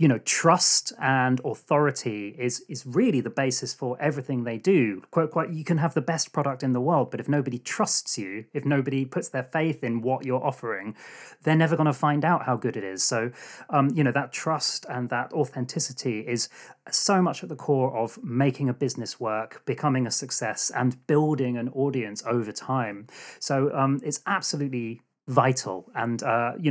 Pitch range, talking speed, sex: 125-155 Hz, 195 wpm, male